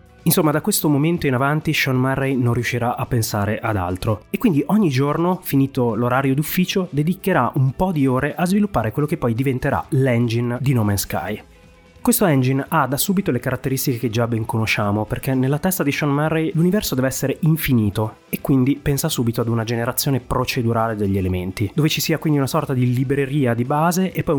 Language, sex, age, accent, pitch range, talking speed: Italian, male, 30-49, native, 115-150 Hz, 195 wpm